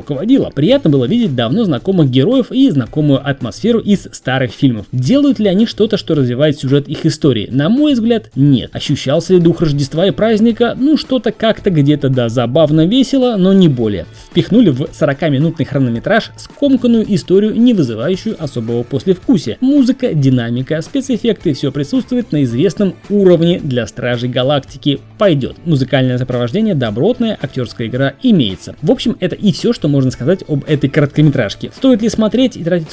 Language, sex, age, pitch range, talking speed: Russian, male, 20-39, 130-215 Hz, 160 wpm